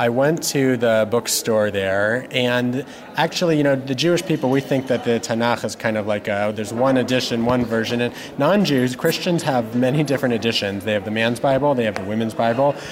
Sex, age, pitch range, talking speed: male, 30-49, 120-145 Hz, 210 wpm